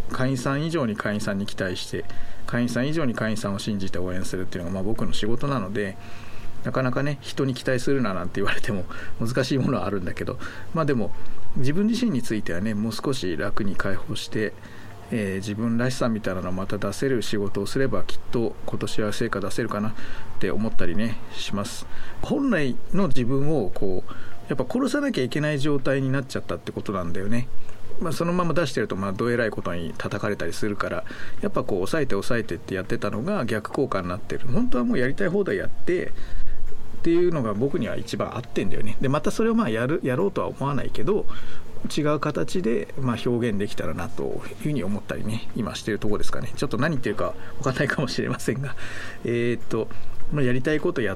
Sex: male